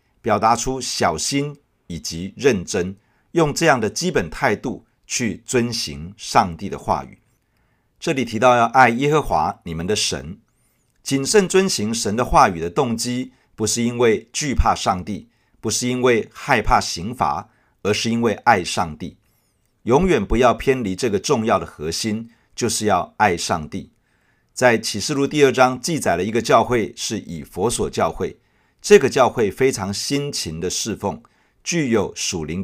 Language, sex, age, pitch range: Chinese, male, 50-69, 105-140 Hz